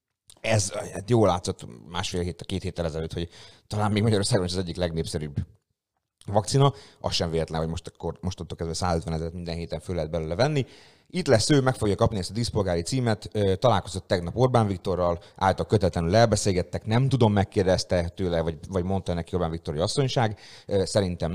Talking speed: 170 wpm